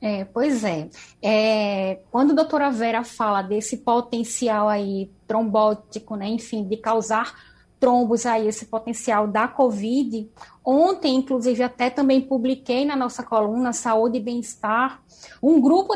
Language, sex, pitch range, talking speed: Portuguese, female, 225-275 Hz, 130 wpm